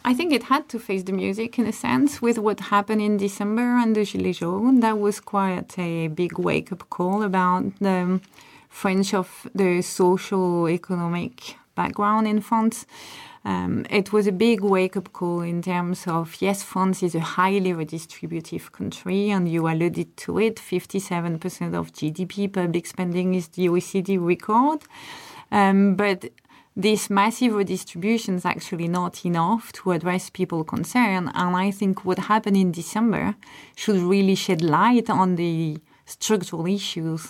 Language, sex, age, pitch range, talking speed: English, female, 30-49, 175-215 Hz, 155 wpm